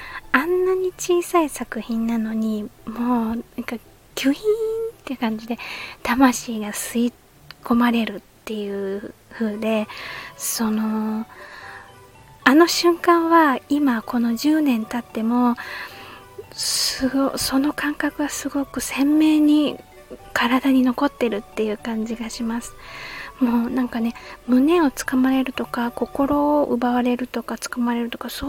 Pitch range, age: 235-285 Hz, 20-39